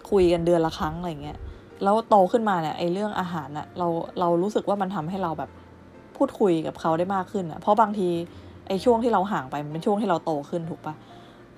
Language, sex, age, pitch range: Thai, female, 20-39, 160-190 Hz